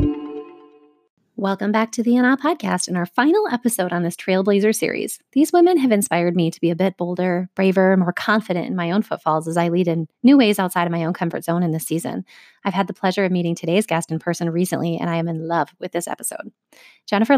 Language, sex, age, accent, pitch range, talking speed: English, female, 30-49, American, 175-215 Hz, 230 wpm